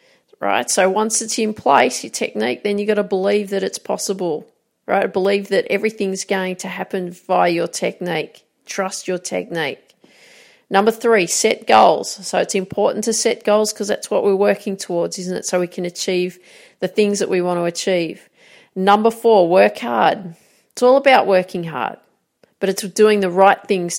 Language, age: English, 40-59